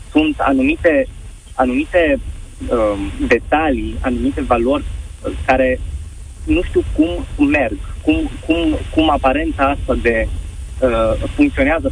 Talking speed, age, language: 100 wpm, 20-39, Romanian